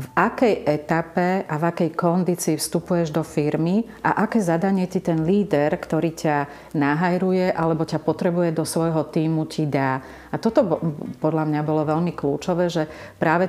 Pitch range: 150-170 Hz